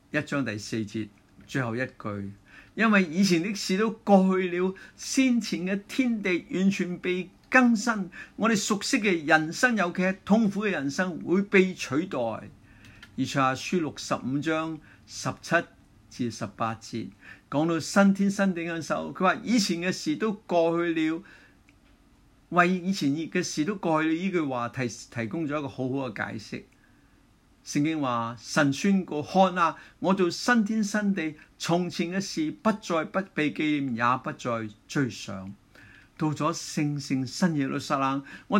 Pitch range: 120-190 Hz